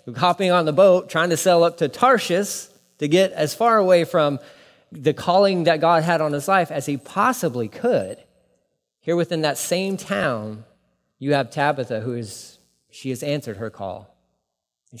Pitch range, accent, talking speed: 135-175 Hz, American, 175 wpm